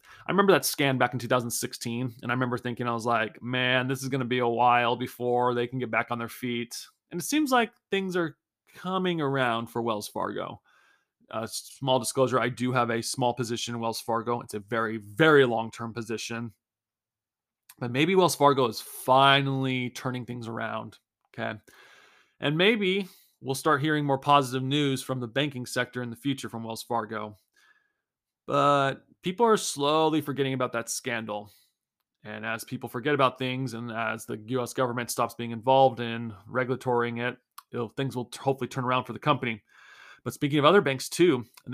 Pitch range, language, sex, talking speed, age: 120-145 Hz, English, male, 185 wpm, 20-39